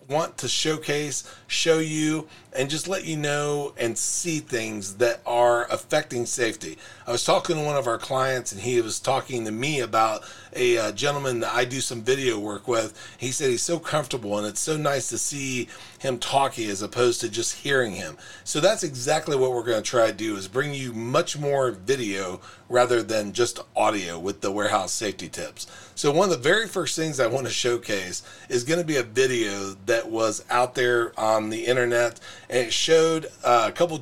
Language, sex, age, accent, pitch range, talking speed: English, male, 40-59, American, 120-155 Hz, 205 wpm